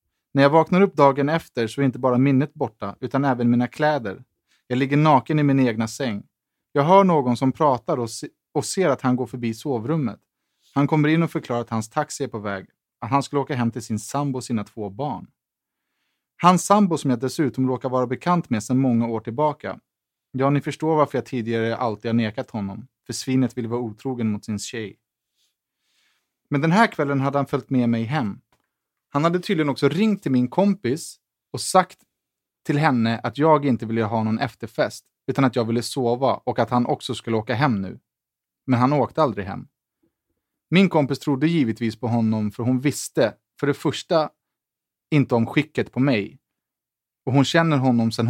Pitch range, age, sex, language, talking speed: 115-150 Hz, 30-49, male, English, 200 wpm